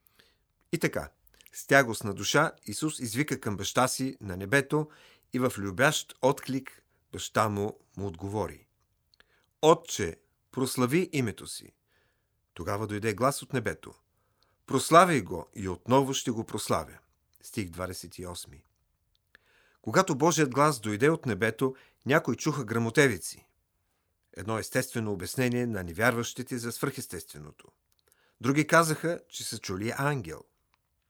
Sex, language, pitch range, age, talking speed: male, Bulgarian, 100-140 Hz, 50-69, 120 wpm